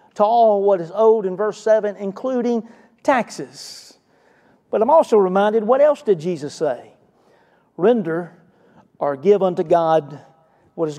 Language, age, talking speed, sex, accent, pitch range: English, 40-59, 140 wpm, male, American, 160-215 Hz